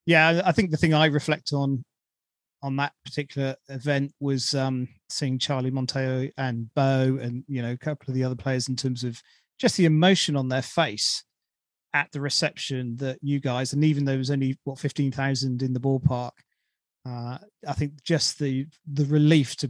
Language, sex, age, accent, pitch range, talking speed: English, male, 30-49, British, 130-145 Hz, 190 wpm